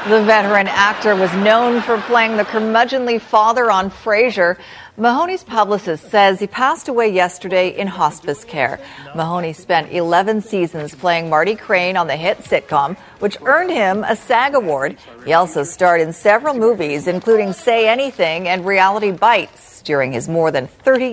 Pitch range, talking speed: 175-235 Hz, 160 wpm